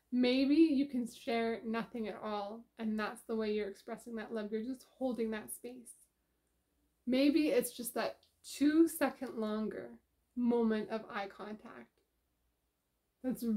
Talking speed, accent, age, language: 135 wpm, American, 20-39, English